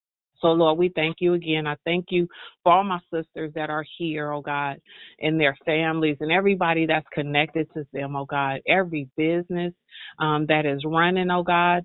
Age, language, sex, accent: 30-49, English, female, American